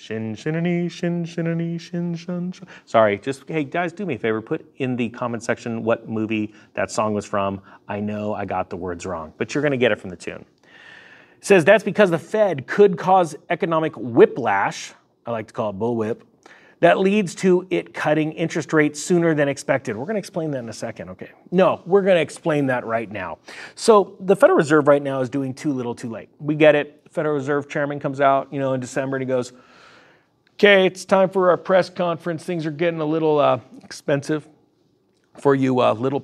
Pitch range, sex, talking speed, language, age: 125-170 Hz, male, 215 wpm, English, 30-49